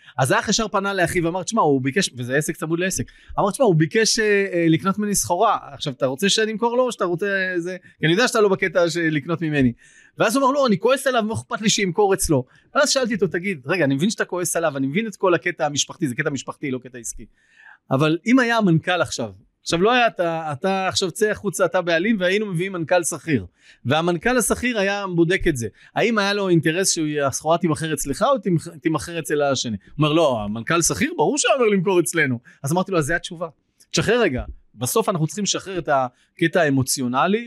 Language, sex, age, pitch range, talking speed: Hebrew, male, 30-49, 145-200 Hz, 220 wpm